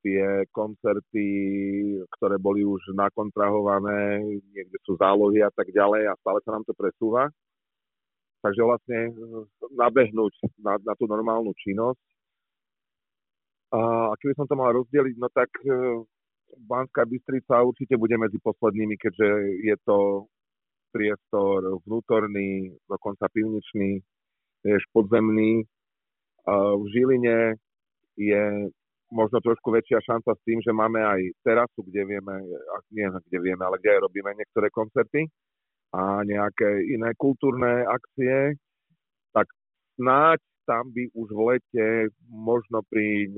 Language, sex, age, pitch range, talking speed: Slovak, male, 40-59, 100-115 Hz, 120 wpm